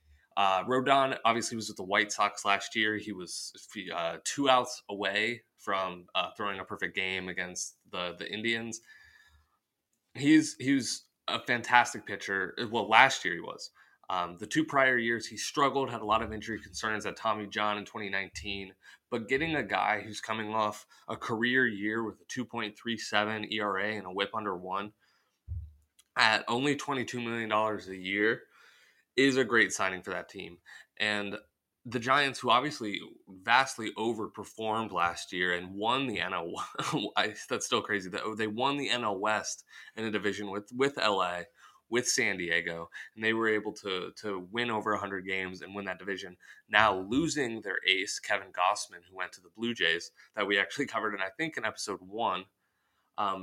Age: 20-39